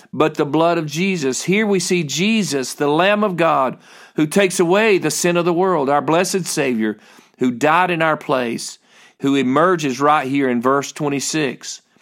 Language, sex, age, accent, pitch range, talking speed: English, male, 50-69, American, 135-170 Hz, 180 wpm